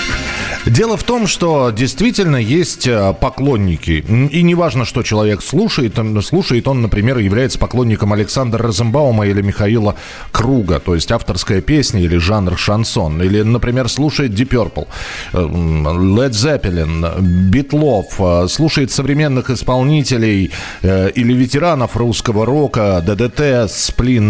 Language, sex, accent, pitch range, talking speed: Russian, male, native, 100-145 Hz, 115 wpm